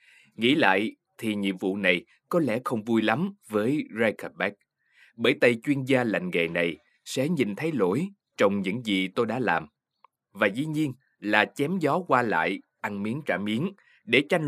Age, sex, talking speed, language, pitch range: 20-39, male, 180 wpm, Vietnamese, 105-155 Hz